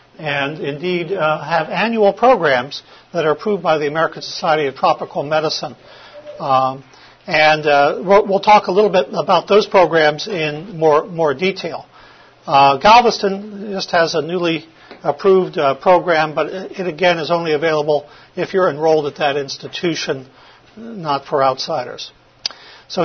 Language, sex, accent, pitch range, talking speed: English, male, American, 155-200 Hz, 145 wpm